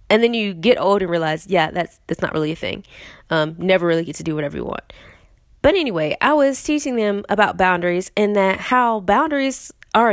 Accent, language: American, English